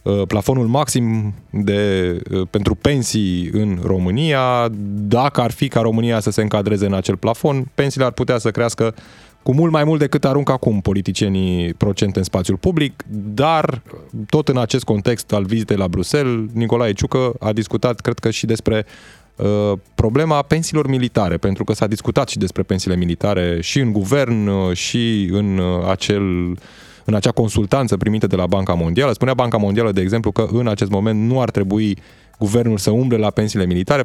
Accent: native